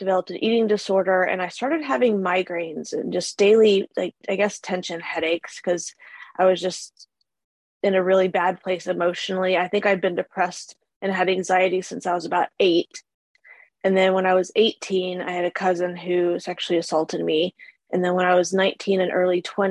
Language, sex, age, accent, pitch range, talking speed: English, female, 20-39, American, 180-205 Hz, 190 wpm